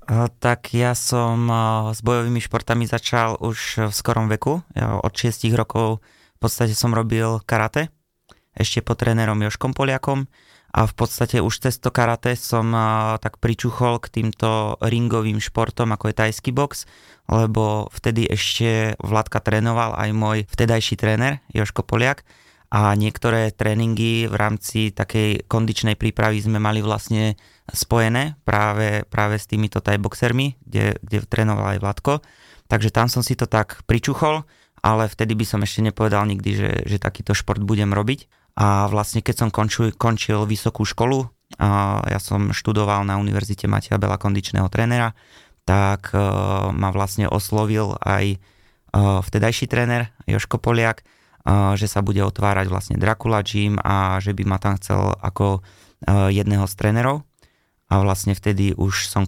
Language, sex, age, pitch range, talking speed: Slovak, male, 20-39, 100-115 Hz, 145 wpm